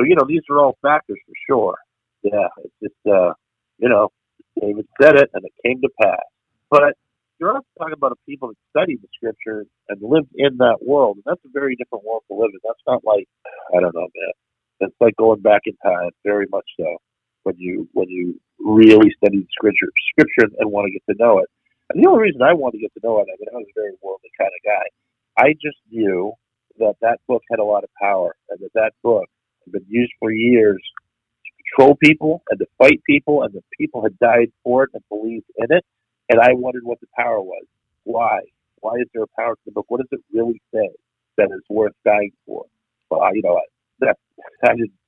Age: 50-69